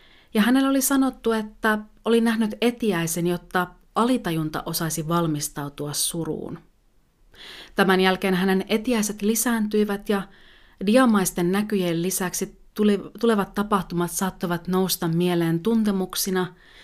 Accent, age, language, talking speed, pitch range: native, 30-49, Finnish, 100 wpm, 170-210 Hz